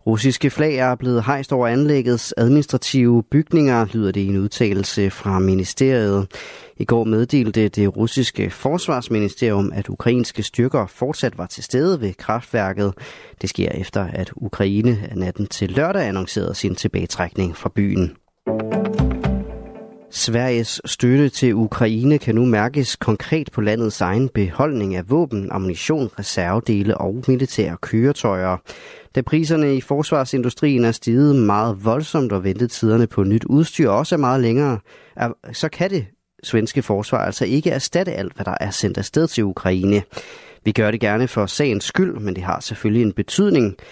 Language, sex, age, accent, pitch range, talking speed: Danish, male, 30-49, native, 100-135 Hz, 150 wpm